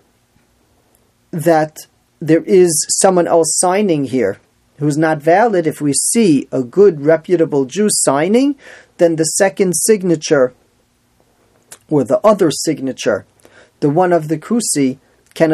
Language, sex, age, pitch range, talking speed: English, male, 40-59, 150-200 Hz, 125 wpm